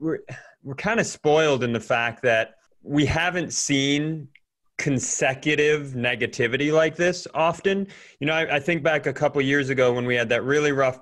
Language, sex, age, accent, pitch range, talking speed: English, male, 30-49, American, 130-160 Hz, 185 wpm